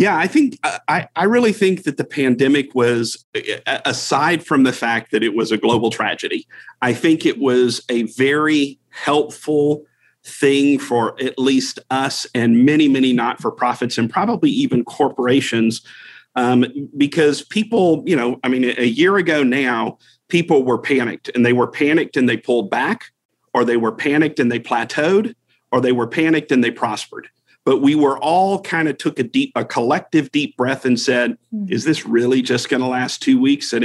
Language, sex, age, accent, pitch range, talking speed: English, male, 40-59, American, 120-150 Hz, 180 wpm